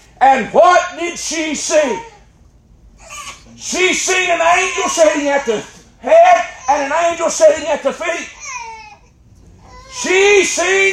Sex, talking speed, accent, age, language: male, 120 wpm, American, 40-59, English